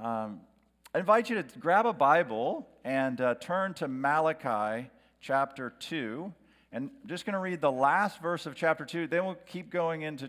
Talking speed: 185 wpm